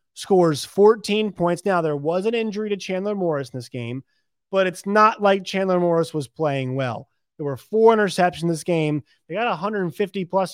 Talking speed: 195 wpm